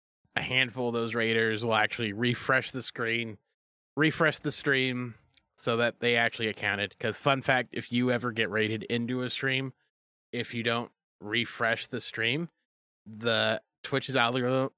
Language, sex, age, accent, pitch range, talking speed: English, male, 20-39, American, 105-125 Hz, 155 wpm